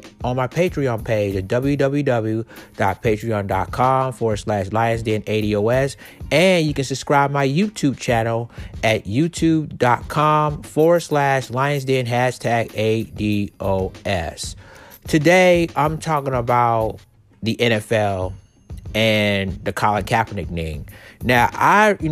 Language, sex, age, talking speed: English, male, 30-49, 105 wpm